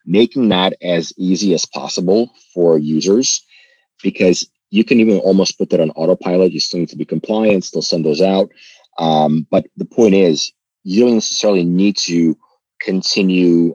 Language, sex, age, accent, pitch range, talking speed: English, male, 30-49, American, 80-95 Hz, 165 wpm